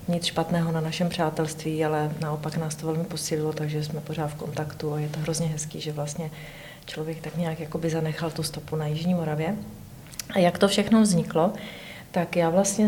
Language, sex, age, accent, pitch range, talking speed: Czech, female, 40-59, native, 155-180 Hz, 185 wpm